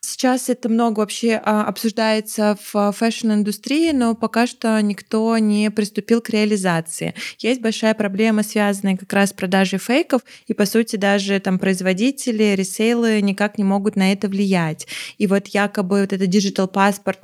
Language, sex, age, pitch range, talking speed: Russian, female, 20-39, 190-225 Hz, 155 wpm